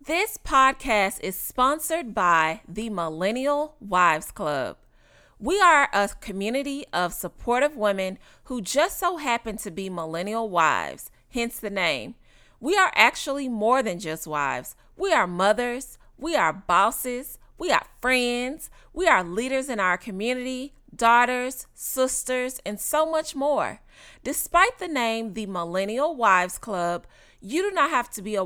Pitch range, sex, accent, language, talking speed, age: 195-270 Hz, female, American, English, 145 wpm, 30-49